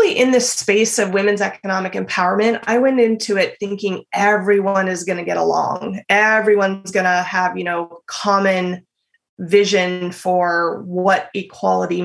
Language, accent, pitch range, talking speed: English, American, 190-230 Hz, 145 wpm